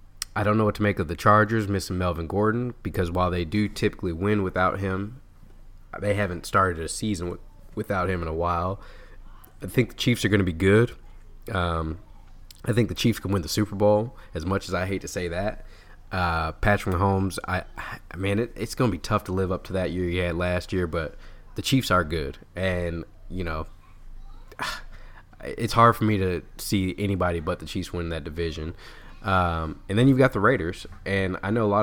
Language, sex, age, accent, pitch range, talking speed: English, male, 20-39, American, 90-105 Hz, 210 wpm